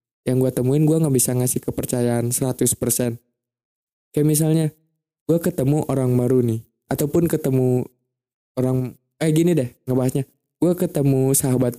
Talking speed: 130 wpm